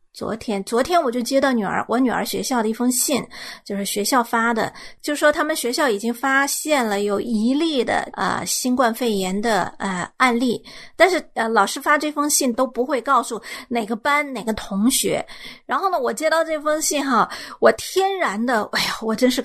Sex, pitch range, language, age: female, 220-295 Hz, Chinese, 30-49